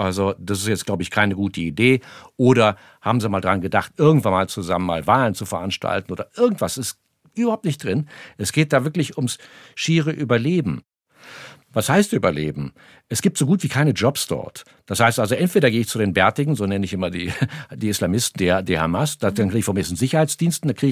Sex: male